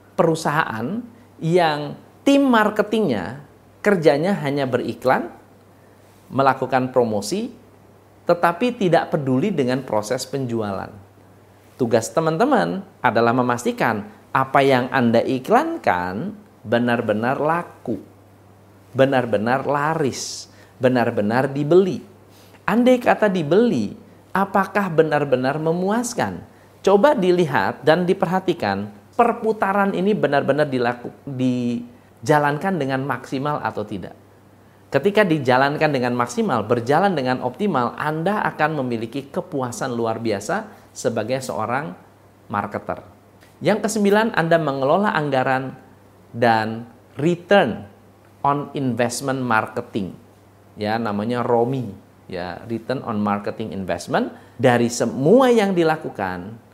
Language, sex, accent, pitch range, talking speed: Indonesian, male, native, 105-165 Hz, 90 wpm